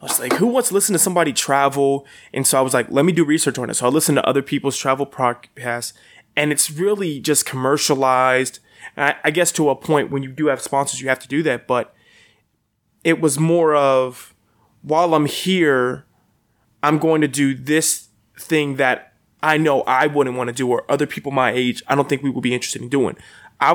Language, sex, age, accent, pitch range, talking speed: English, male, 20-39, American, 130-155 Hz, 220 wpm